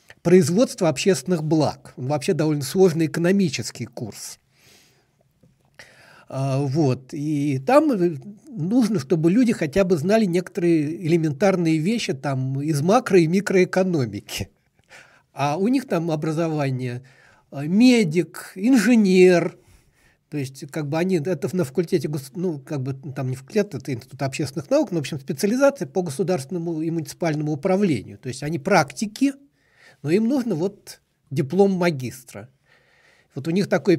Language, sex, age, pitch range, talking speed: Russian, male, 60-79, 140-190 Hz, 130 wpm